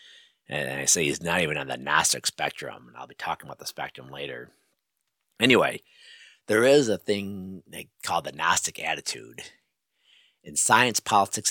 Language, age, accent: English, 50-69, American